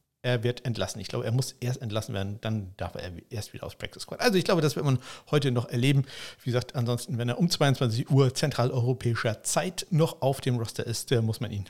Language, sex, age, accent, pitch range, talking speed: German, male, 60-79, German, 125-165 Hz, 230 wpm